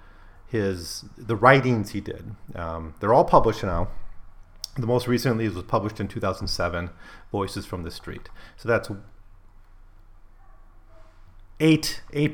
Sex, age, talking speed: male, 30-49, 120 wpm